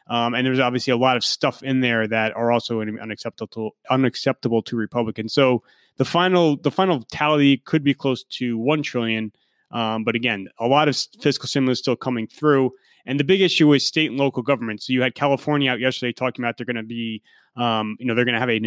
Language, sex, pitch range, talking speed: English, male, 115-140 Hz, 220 wpm